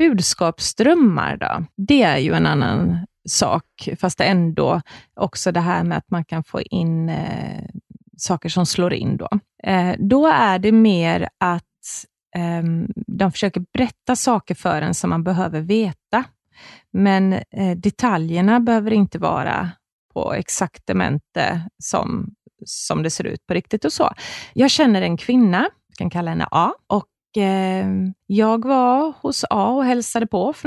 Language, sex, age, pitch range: Swedish, female, 20-39, 180-235 Hz